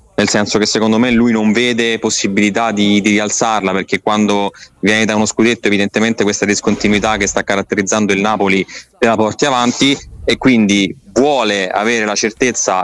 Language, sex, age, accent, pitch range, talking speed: Italian, male, 20-39, native, 100-115 Hz, 165 wpm